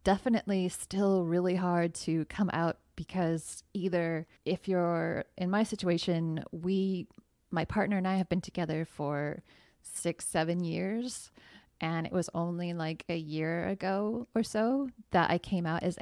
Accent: American